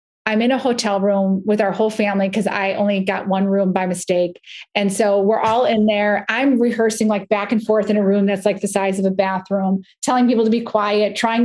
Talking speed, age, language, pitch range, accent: 235 wpm, 30-49, English, 205-245 Hz, American